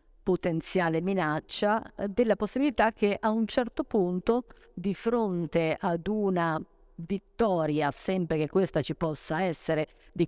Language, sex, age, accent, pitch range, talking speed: Italian, female, 50-69, native, 160-210 Hz, 125 wpm